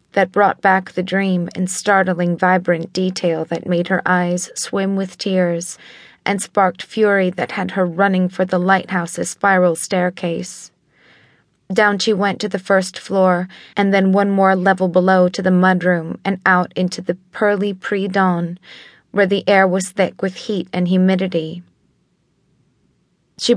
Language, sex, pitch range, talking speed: English, female, 175-195 Hz, 155 wpm